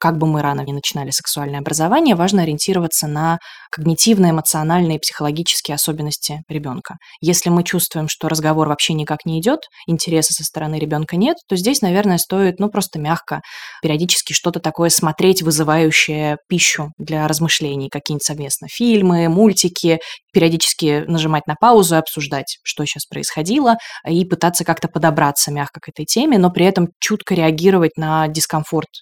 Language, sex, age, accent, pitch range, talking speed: Russian, female, 20-39, native, 155-180 Hz, 150 wpm